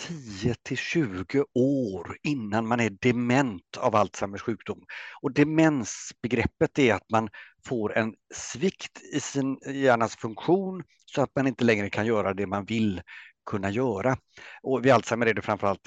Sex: male